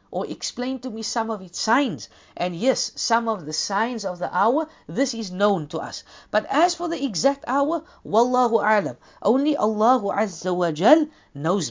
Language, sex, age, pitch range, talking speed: English, female, 50-69, 195-265 Hz, 170 wpm